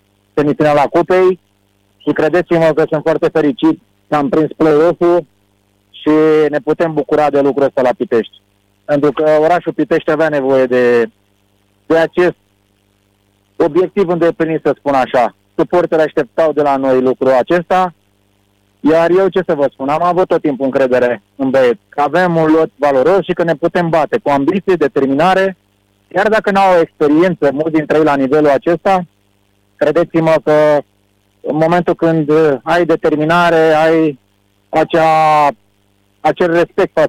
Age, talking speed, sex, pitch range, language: 30-49, 145 wpm, male, 115-170 Hz, Romanian